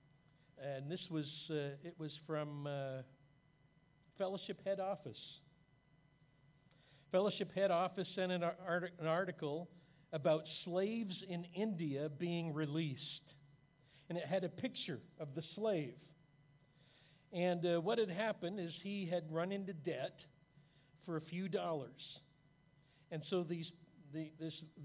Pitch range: 150-180 Hz